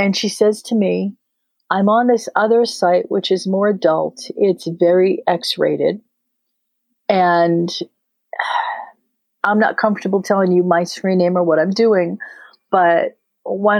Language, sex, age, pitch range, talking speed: English, female, 40-59, 175-210 Hz, 140 wpm